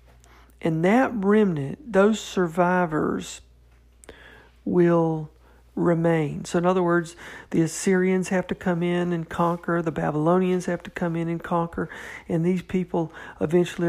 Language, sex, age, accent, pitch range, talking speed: English, male, 50-69, American, 155-180 Hz, 135 wpm